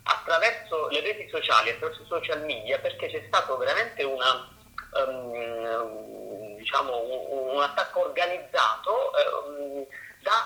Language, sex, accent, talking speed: Italian, male, native, 115 wpm